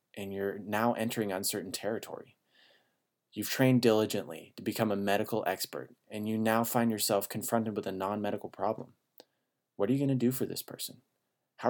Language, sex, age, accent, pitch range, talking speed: English, male, 20-39, American, 100-125 Hz, 170 wpm